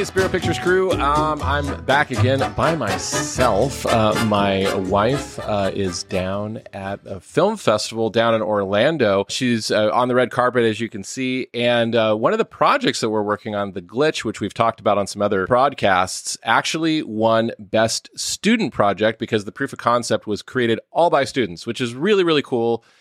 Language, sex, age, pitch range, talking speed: English, male, 30-49, 100-125 Hz, 190 wpm